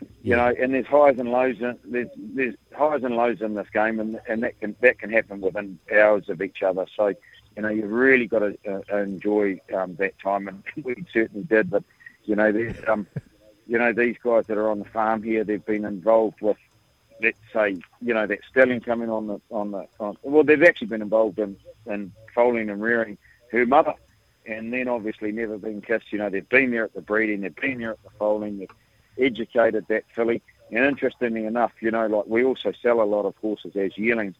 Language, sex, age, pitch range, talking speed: English, male, 50-69, 105-120 Hz, 220 wpm